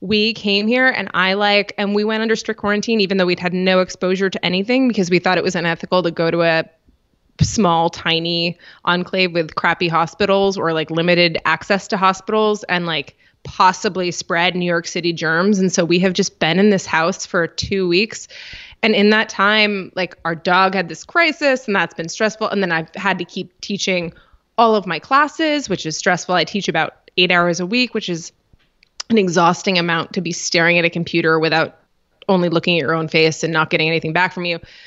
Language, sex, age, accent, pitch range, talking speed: English, female, 20-39, American, 170-205 Hz, 210 wpm